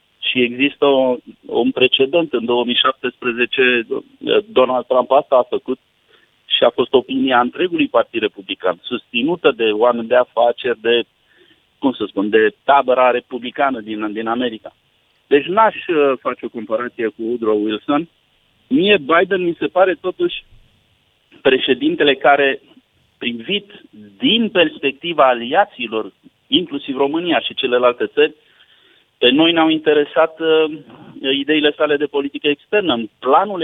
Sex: male